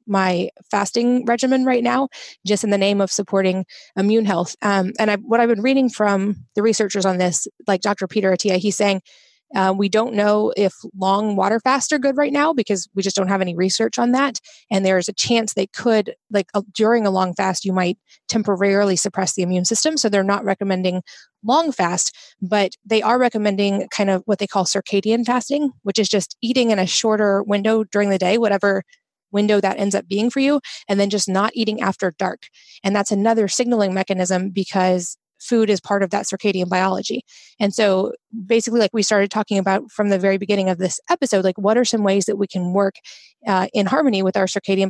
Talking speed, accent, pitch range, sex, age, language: 210 wpm, American, 190-220 Hz, female, 20-39, English